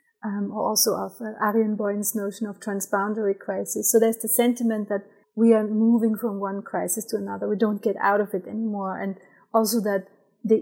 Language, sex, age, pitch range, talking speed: English, female, 30-49, 205-240 Hz, 190 wpm